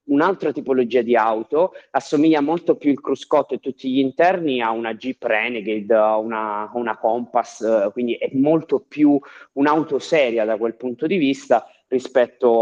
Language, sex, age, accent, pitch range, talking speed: Italian, male, 20-39, native, 110-125 Hz, 155 wpm